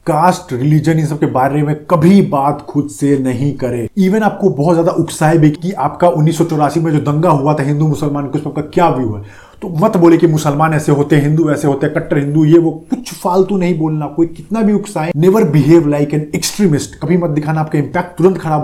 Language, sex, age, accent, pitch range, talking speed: Hindi, male, 30-49, native, 140-170 Hz, 225 wpm